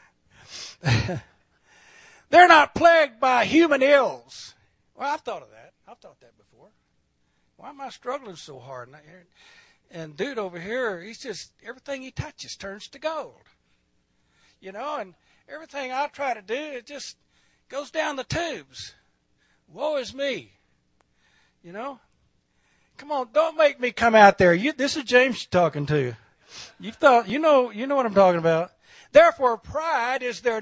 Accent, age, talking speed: American, 60-79, 160 wpm